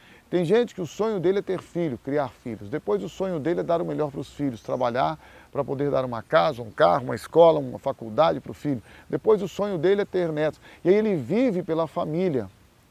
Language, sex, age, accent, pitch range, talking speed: Portuguese, male, 40-59, Brazilian, 130-175 Hz, 230 wpm